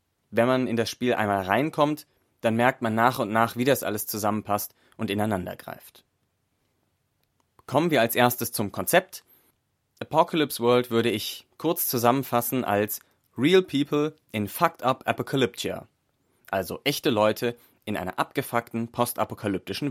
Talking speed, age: 135 wpm, 30-49